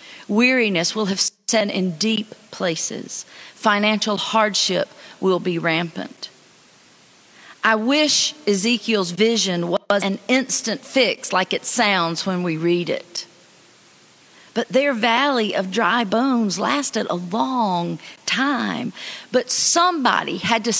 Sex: female